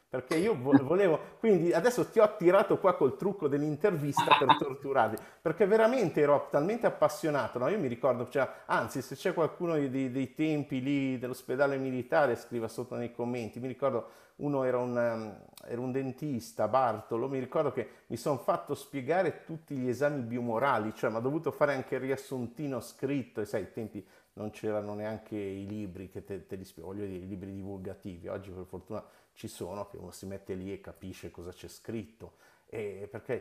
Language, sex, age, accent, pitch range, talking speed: Italian, male, 50-69, native, 100-135 Hz, 185 wpm